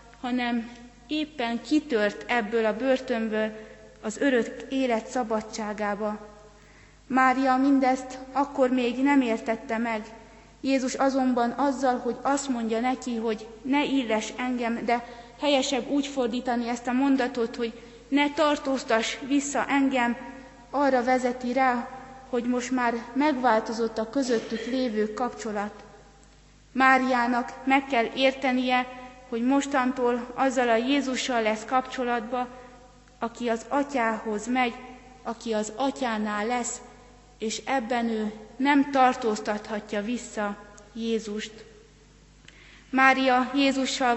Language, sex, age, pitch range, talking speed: Hungarian, female, 30-49, 230-260 Hz, 105 wpm